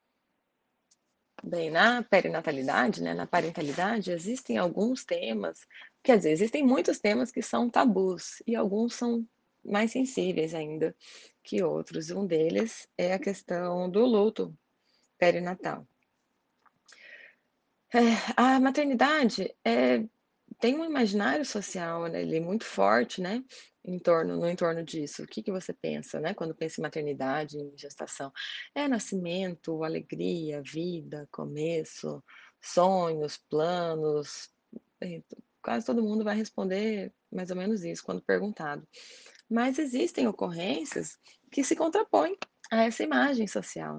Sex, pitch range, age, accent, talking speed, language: female, 165-235 Hz, 20-39, Brazilian, 120 wpm, Portuguese